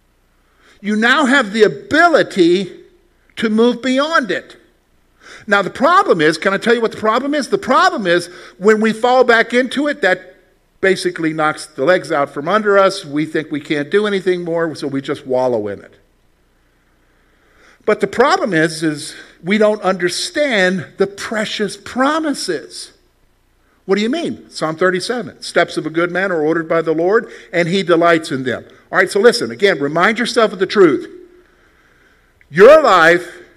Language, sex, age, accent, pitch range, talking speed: English, male, 50-69, American, 160-230 Hz, 170 wpm